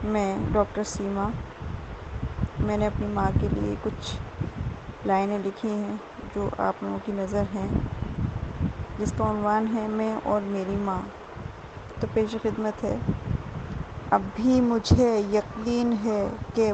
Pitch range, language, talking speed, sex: 195-215 Hz, Hindi, 120 wpm, female